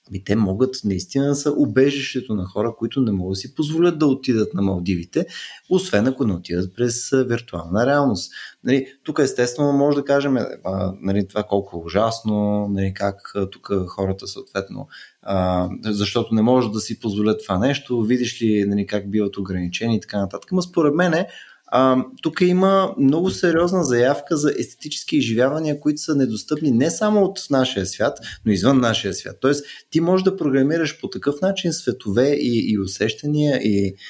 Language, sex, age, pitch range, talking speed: Bulgarian, male, 20-39, 105-150 Hz, 165 wpm